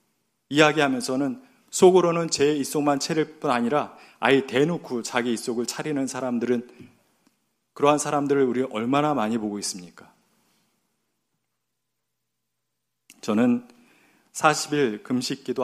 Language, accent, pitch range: Korean, native, 110-145 Hz